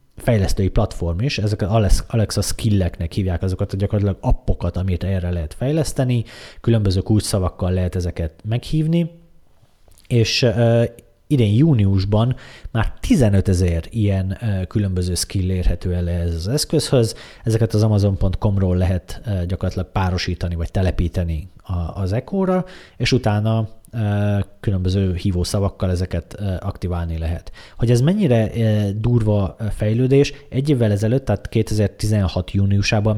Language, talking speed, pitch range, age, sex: Hungarian, 125 wpm, 90-115 Hz, 30-49, male